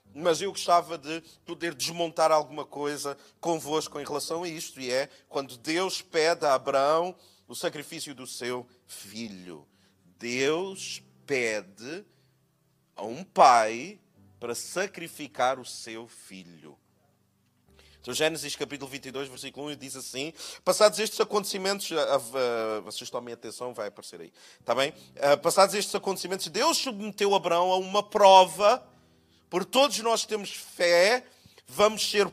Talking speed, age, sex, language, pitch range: 130 wpm, 30-49, male, Portuguese, 135-210 Hz